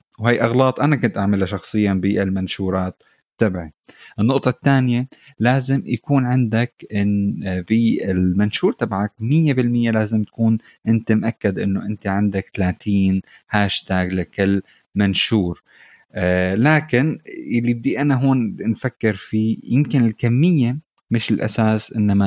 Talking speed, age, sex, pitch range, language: 110 wpm, 30-49, male, 100-125 Hz, Arabic